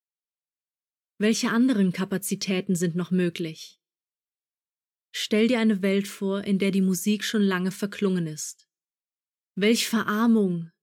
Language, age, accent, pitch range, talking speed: German, 30-49, German, 185-220 Hz, 115 wpm